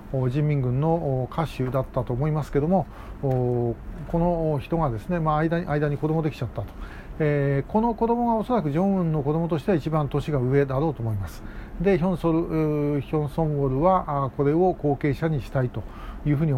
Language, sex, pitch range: Japanese, male, 140-175 Hz